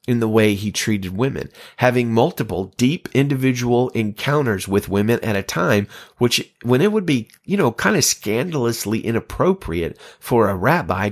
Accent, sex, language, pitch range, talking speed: American, male, English, 95-130 Hz, 160 wpm